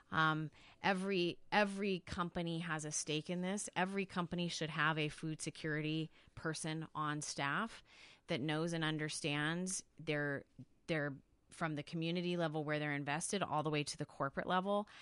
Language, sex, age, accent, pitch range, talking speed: English, female, 30-49, American, 145-175 Hz, 155 wpm